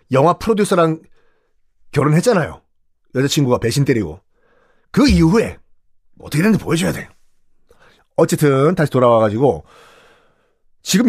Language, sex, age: Korean, male, 40-59